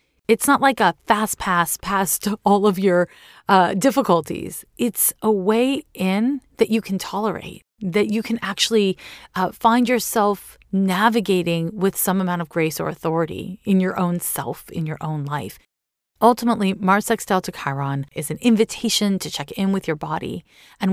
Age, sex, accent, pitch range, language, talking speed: 30-49, female, American, 165-210 Hz, English, 165 wpm